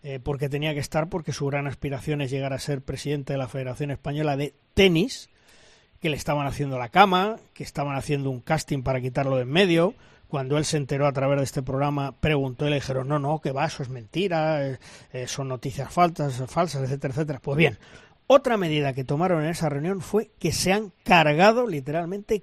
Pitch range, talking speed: 140-180 Hz, 210 wpm